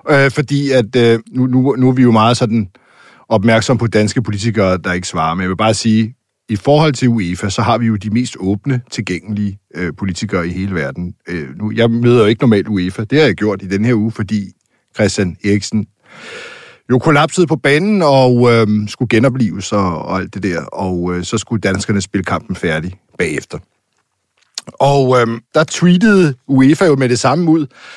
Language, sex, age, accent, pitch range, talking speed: Danish, male, 60-79, native, 100-130 Hz, 195 wpm